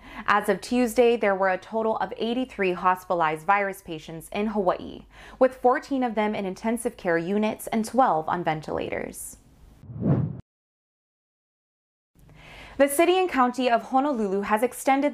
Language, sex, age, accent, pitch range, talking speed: English, female, 20-39, American, 190-245 Hz, 135 wpm